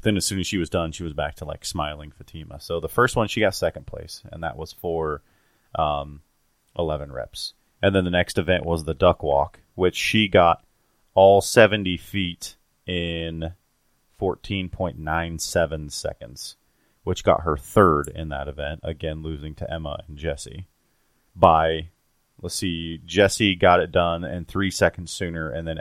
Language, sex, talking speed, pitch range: English, male, 170 wpm, 80-95 Hz